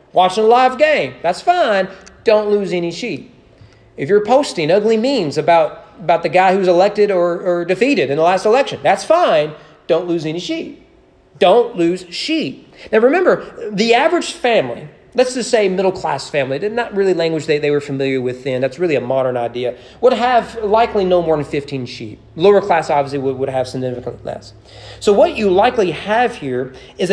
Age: 30-49